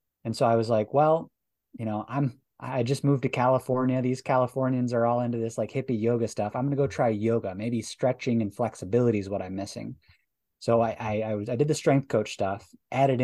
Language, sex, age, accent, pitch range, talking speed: English, male, 20-39, American, 110-135 Hz, 225 wpm